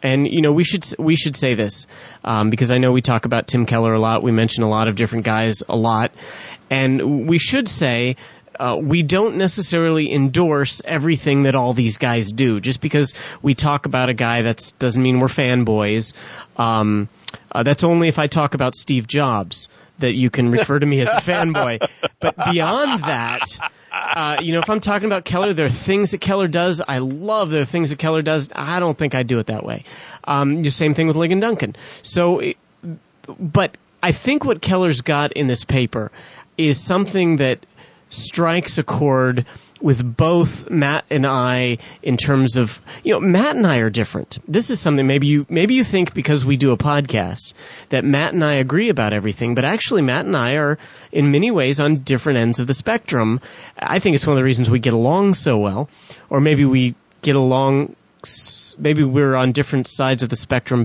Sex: male